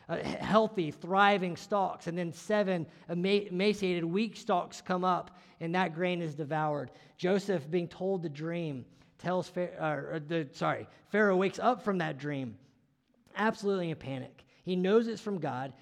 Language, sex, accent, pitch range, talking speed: English, male, American, 165-220 Hz, 160 wpm